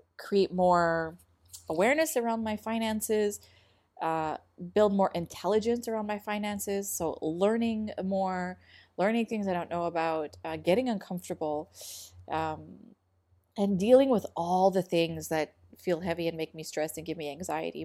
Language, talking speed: English, 145 wpm